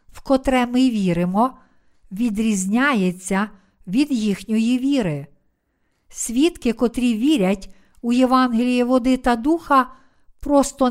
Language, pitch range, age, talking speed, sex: Ukrainian, 215-260 Hz, 50-69, 95 wpm, female